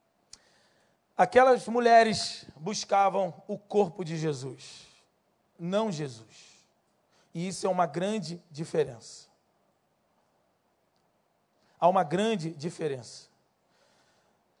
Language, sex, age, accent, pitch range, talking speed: Portuguese, male, 40-59, Brazilian, 185-255 Hz, 80 wpm